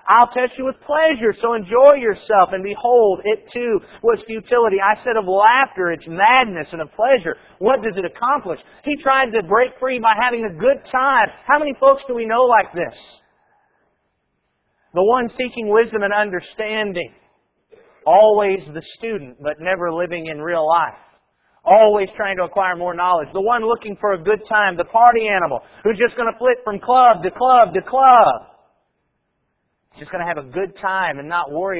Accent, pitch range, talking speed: American, 175-235 Hz, 185 wpm